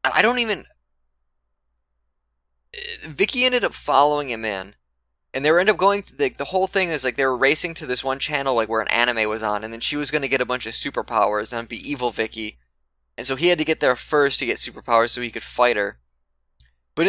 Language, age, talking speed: English, 10-29, 240 wpm